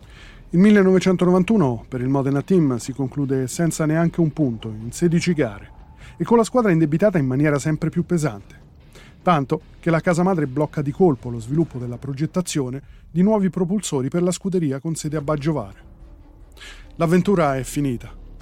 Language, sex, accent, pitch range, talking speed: Italian, male, native, 135-180 Hz, 165 wpm